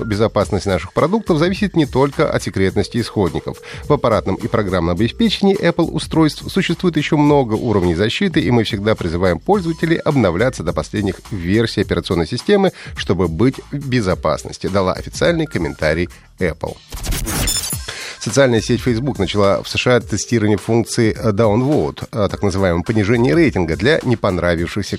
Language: Russian